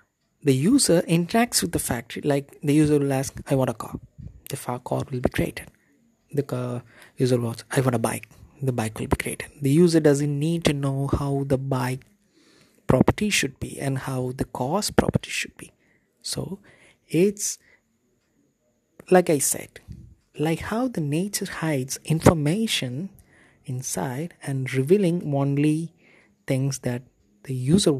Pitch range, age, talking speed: 130-165 Hz, 20-39, 150 wpm